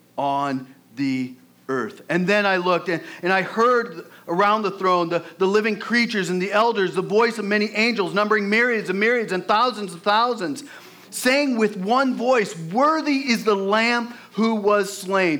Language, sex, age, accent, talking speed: English, male, 40-59, American, 175 wpm